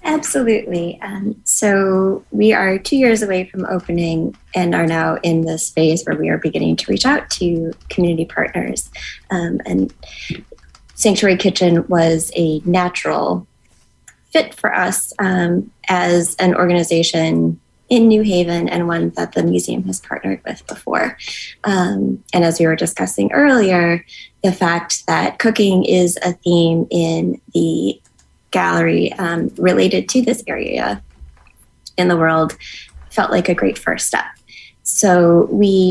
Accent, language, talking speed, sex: American, English, 140 wpm, female